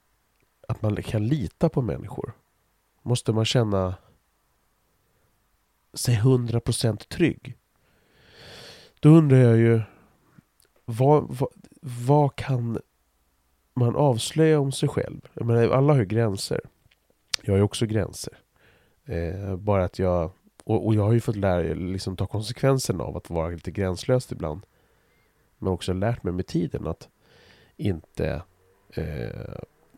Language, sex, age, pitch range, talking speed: Swedish, male, 30-49, 95-125 Hz, 130 wpm